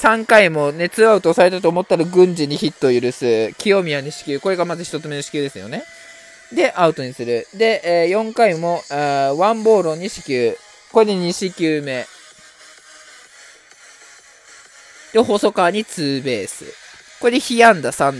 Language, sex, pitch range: Japanese, male, 145-210 Hz